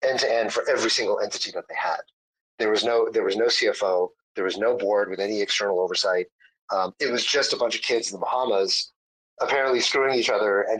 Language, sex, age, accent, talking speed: English, male, 30-49, American, 230 wpm